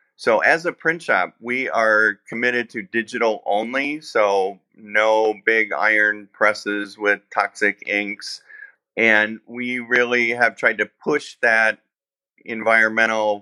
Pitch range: 100-120 Hz